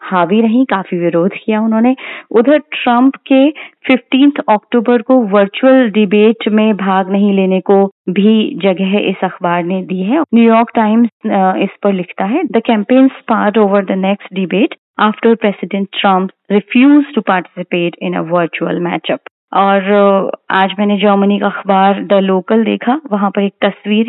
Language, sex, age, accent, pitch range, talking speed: Hindi, female, 30-49, native, 190-230 Hz, 155 wpm